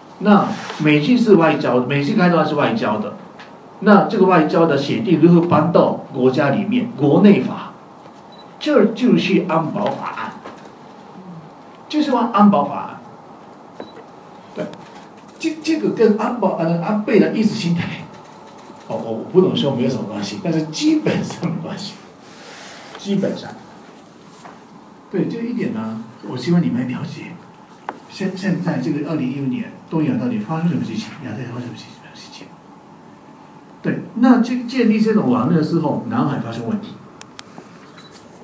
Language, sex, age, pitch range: Chinese, male, 60-79, 160-220 Hz